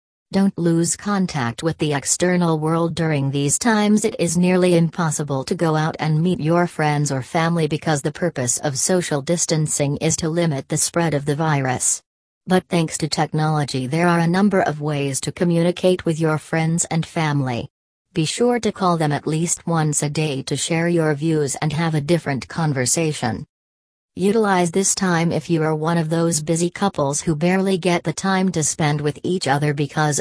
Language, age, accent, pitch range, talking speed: English, 40-59, American, 145-170 Hz, 190 wpm